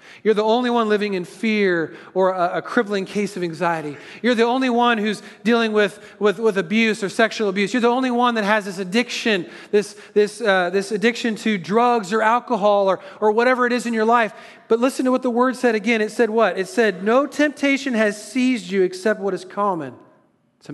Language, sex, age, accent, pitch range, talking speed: English, male, 40-59, American, 200-245 Hz, 215 wpm